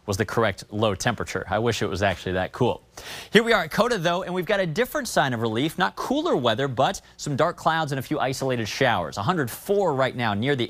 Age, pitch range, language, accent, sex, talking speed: 30-49, 115-155 Hz, English, American, male, 240 wpm